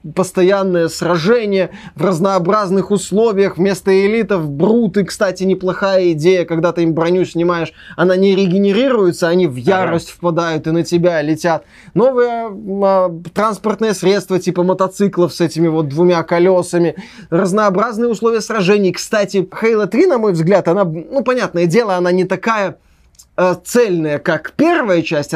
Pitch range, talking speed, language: 170-205 Hz, 135 wpm, Russian